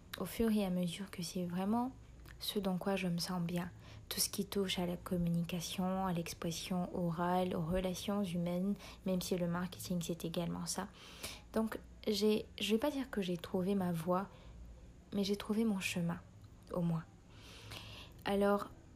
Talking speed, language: 175 wpm, French